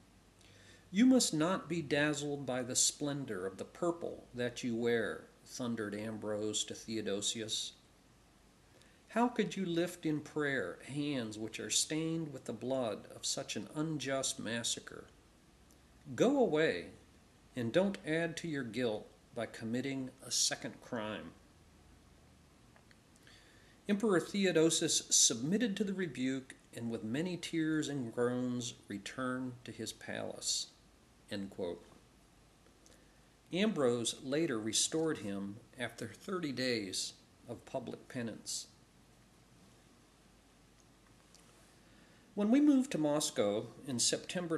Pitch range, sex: 110-160 Hz, male